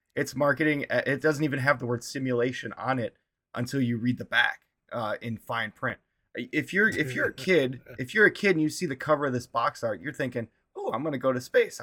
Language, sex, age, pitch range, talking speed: English, male, 20-39, 110-150 Hz, 240 wpm